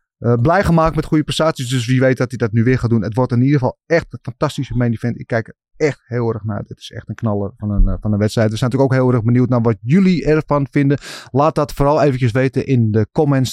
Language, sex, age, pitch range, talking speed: Dutch, male, 30-49, 120-165 Hz, 285 wpm